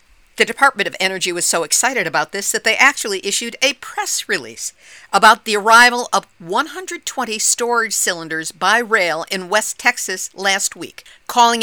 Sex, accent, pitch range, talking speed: female, American, 200-250 Hz, 160 wpm